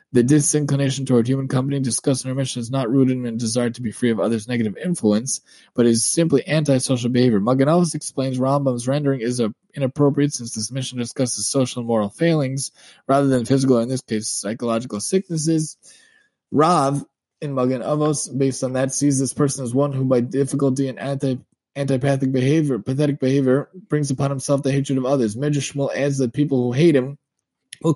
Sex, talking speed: male, 180 wpm